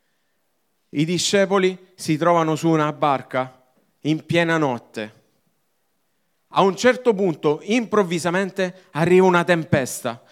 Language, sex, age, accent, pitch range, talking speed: Italian, male, 40-59, native, 130-205 Hz, 105 wpm